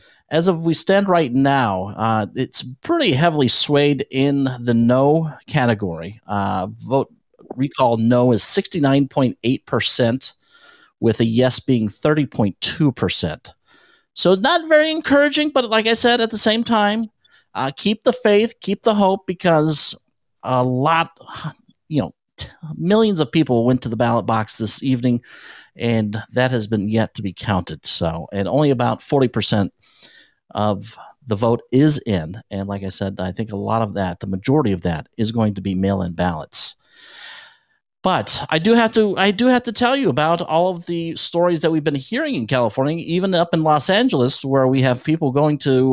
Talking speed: 175 wpm